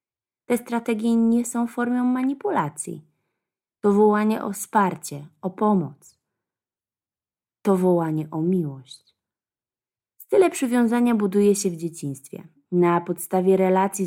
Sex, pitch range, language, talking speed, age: female, 170-210 Hz, Polish, 105 wpm, 20-39